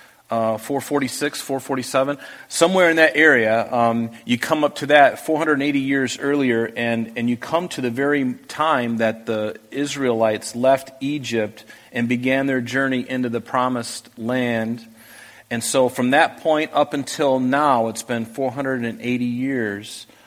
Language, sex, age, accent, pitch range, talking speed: English, male, 40-59, American, 120-140 Hz, 145 wpm